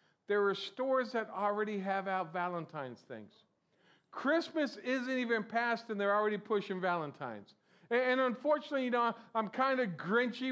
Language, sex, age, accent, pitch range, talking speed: English, male, 50-69, American, 195-240 Hz, 155 wpm